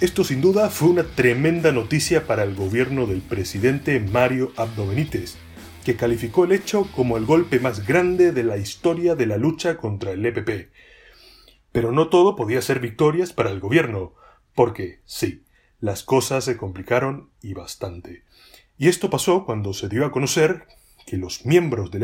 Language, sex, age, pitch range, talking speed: Spanish, male, 30-49, 110-160 Hz, 170 wpm